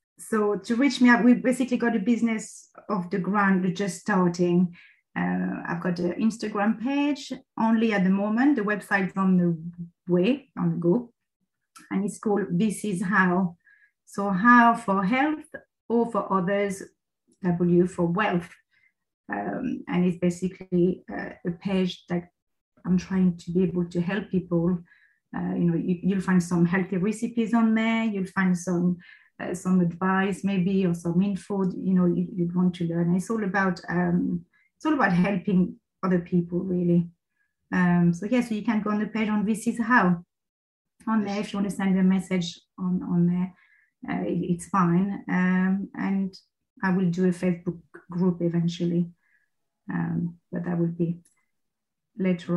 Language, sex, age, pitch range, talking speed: English, female, 30-49, 175-210 Hz, 165 wpm